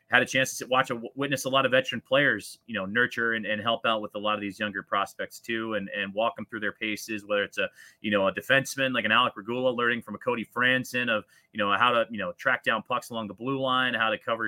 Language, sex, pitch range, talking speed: English, male, 115-135 Hz, 280 wpm